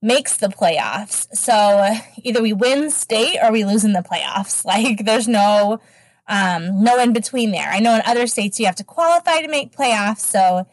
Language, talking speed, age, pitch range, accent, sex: English, 195 wpm, 20-39, 190-240 Hz, American, female